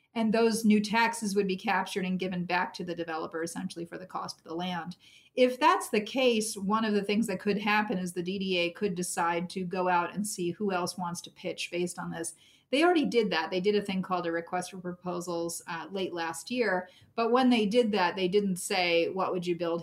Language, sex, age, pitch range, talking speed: English, female, 30-49, 170-205 Hz, 235 wpm